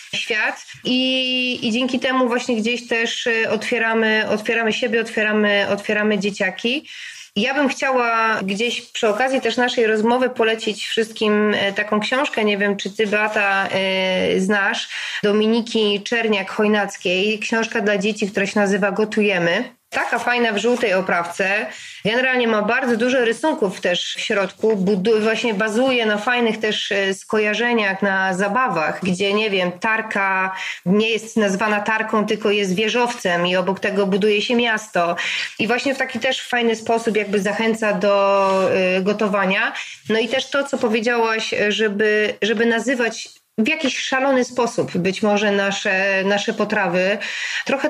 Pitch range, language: 205-245 Hz, Polish